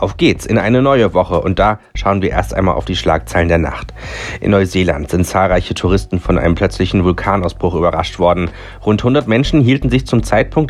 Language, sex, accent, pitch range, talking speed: German, male, German, 90-110 Hz, 195 wpm